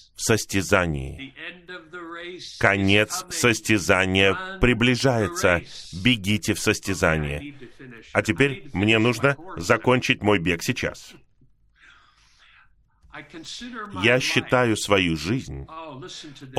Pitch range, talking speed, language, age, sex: 95-125 Hz, 65 wpm, Russian, 30-49, male